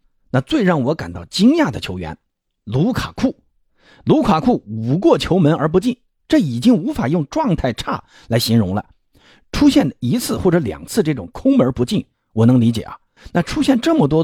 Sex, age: male, 50-69